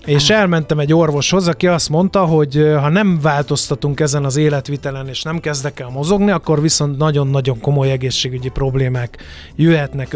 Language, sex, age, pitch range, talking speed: Hungarian, male, 30-49, 135-170 Hz, 155 wpm